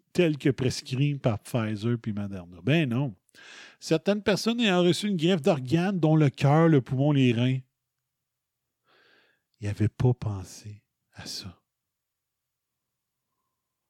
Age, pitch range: 50-69, 130-165 Hz